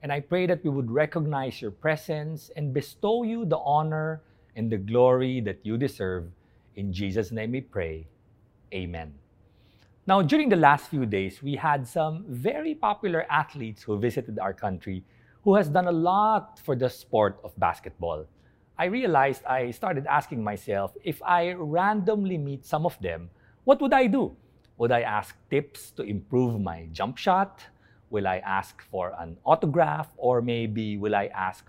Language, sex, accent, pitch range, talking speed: English, male, Filipino, 105-160 Hz, 170 wpm